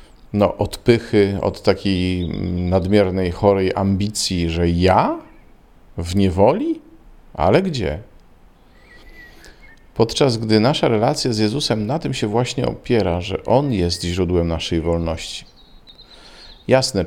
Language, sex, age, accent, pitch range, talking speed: Polish, male, 40-59, native, 90-105 Hz, 115 wpm